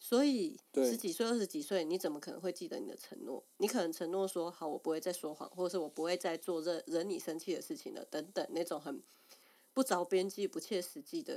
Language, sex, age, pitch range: Chinese, female, 20-39, 165-220 Hz